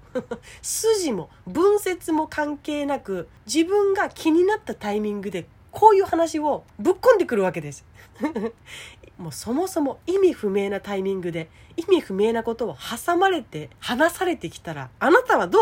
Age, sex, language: 30-49, female, Japanese